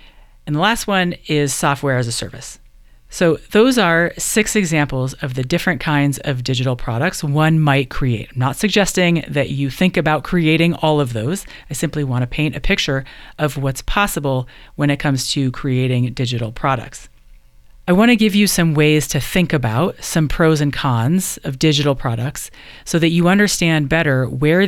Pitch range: 130-170 Hz